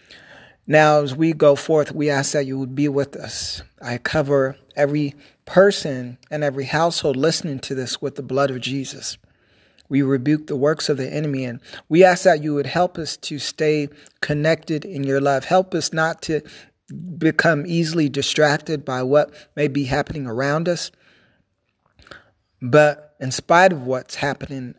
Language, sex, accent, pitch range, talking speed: English, male, American, 130-155 Hz, 165 wpm